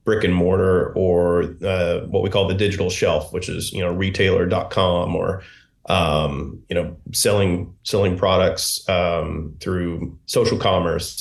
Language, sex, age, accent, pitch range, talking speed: English, male, 30-49, American, 95-110 Hz, 145 wpm